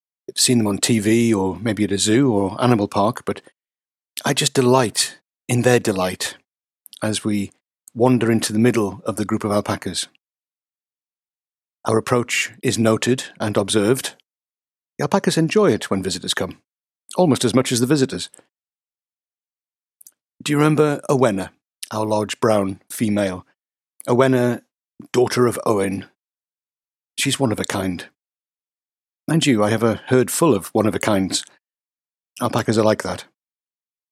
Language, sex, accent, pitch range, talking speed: English, male, British, 105-130 Hz, 145 wpm